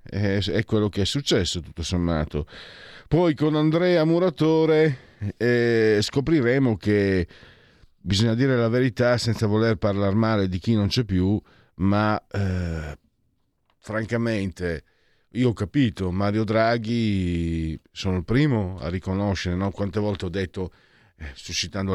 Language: Italian